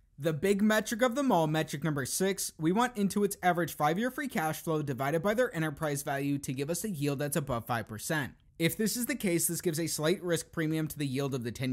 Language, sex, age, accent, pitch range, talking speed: English, male, 20-39, American, 150-190 Hz, 245 wpm